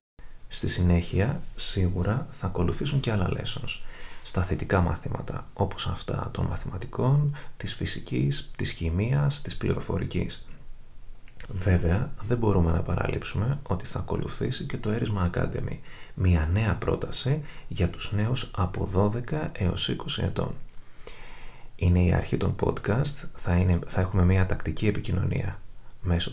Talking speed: 130 wpm